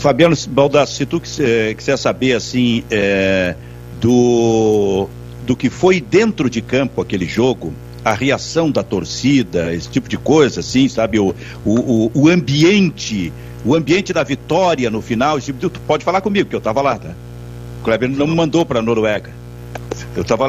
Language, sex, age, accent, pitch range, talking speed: Portuguese, male, 60-79, Brazilian, 105-170 Hz, 165 wpm